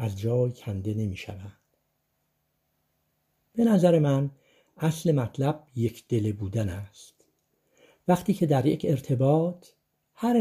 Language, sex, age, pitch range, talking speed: Persian, male, 60-79, 115-170 Hz, 115 wpm